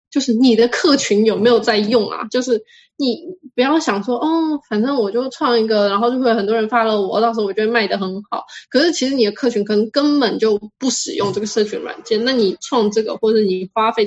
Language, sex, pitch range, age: Chinese, female, 210-250 Hz, 10-29